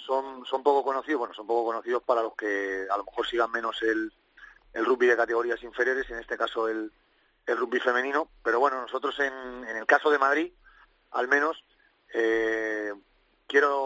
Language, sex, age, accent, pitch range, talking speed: Spanish, male, 30-49, Spanish, 115-145 Hz, 180 wpm